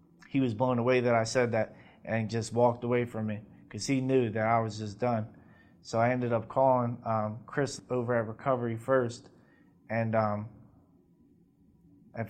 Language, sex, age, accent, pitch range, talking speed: English, male, 20-39, American, 115-125 Hz, 175 wpm